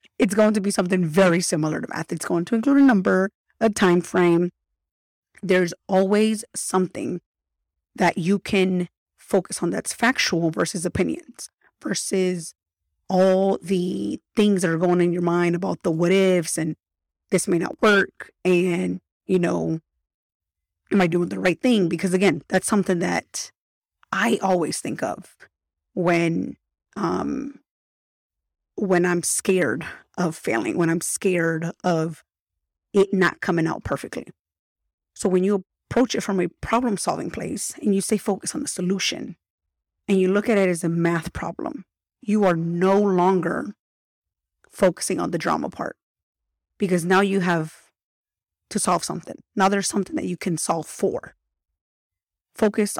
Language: English